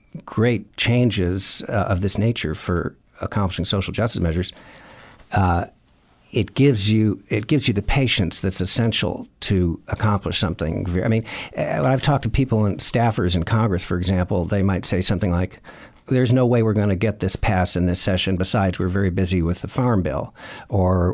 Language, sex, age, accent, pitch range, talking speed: English, male, 60-79, American, 90-115 Hz, 180 wpm